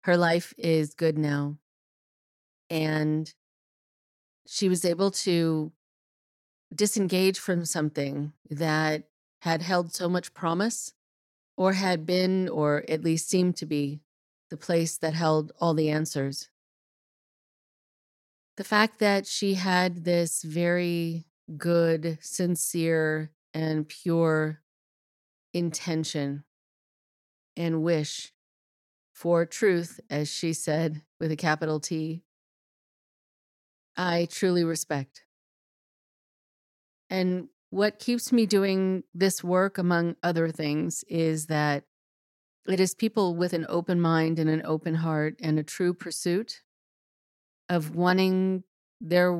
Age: 30-49